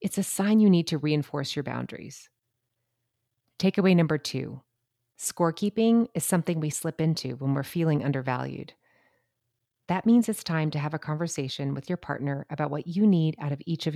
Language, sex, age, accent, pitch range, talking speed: English, female, 30-49, American, 130-175 Hz, 175 wpm